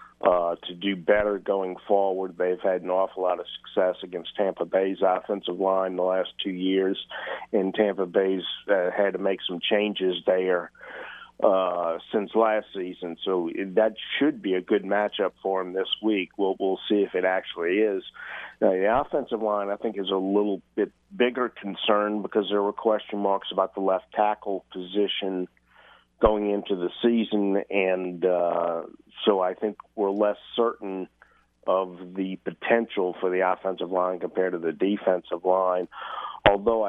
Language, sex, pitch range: English, male, 90-105 Hz